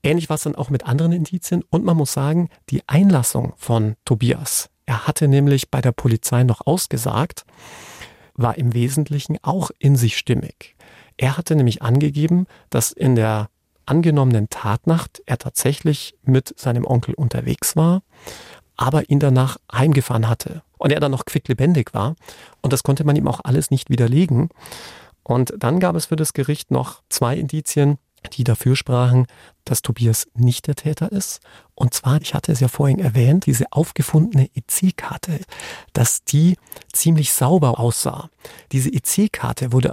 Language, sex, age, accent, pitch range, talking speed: German, male, 40-59, German, 125-155 Hz, 160 wpm